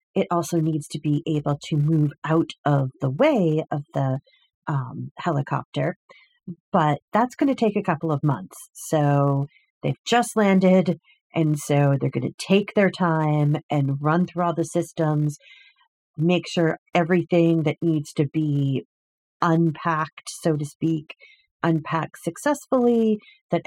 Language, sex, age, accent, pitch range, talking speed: English, female, 40-59, American, 150-190 Hz, 140 wpm